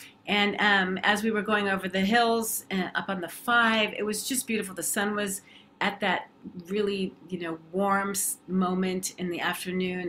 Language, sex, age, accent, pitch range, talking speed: English, female, 40-59, American, 175-210 Hz, 190 wpm